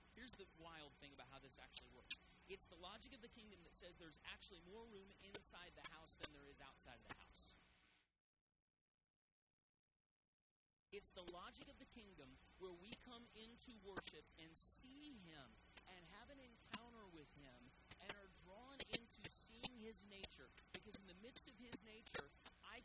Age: 40-59